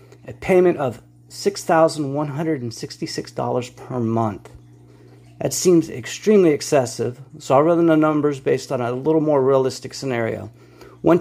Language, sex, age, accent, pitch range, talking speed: English, male, 40-59, American, 120-155 Hz, 125 wpm